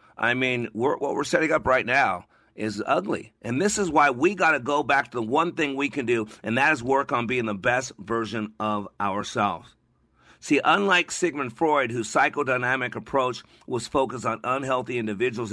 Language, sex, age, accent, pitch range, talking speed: English, male, 50-69, American, 110-140 Hz, 190 wpm